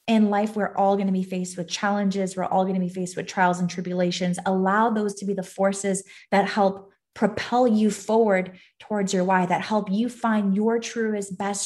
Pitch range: 190-230 Hz